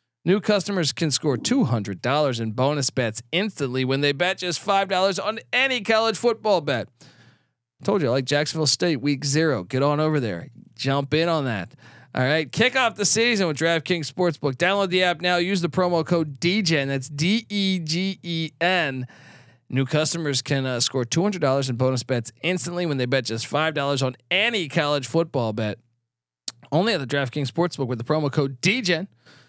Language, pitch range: English, 135-175 Hz